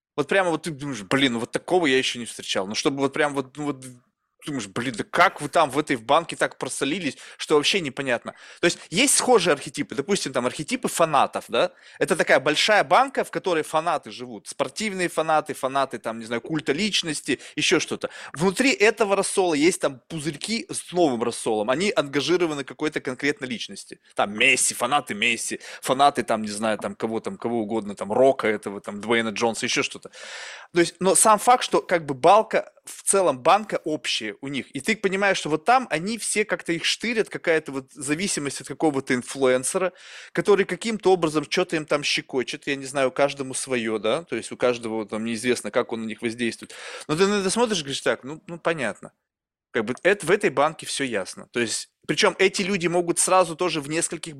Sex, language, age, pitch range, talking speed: male, Russian, 20-39, 130-180 Hz, 200 wpm